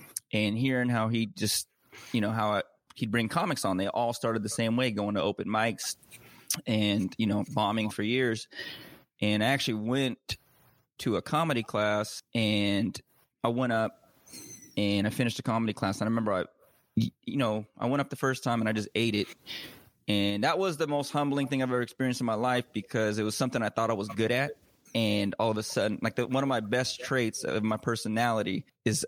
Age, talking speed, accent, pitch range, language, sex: 20-39, 210 wpm, American, 105-125 Hz, English, male